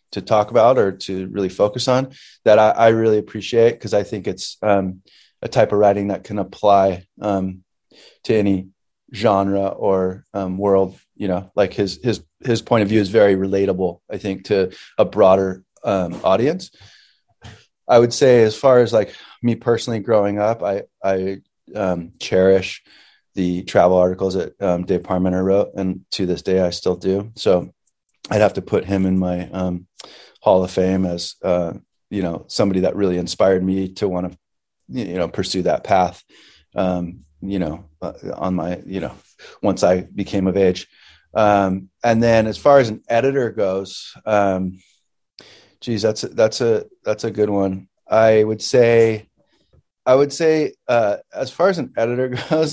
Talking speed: 175 wpm